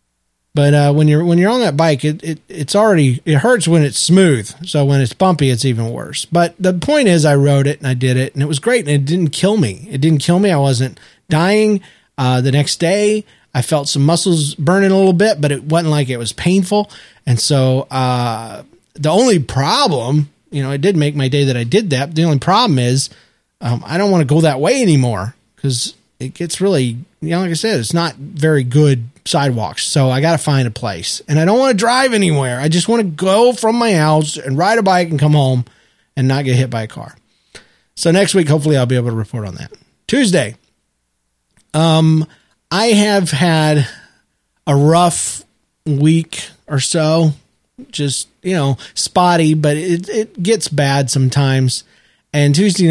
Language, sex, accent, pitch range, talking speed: English, male, American, 130-175 Hz, 210 wpm